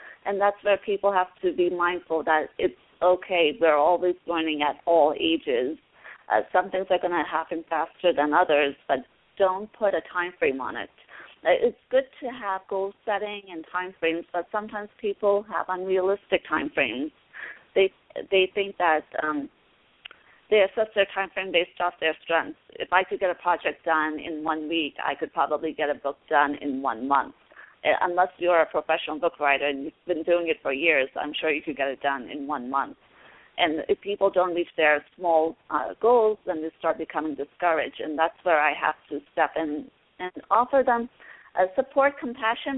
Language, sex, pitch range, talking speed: English, female, 160-200 Hz, 190 wpm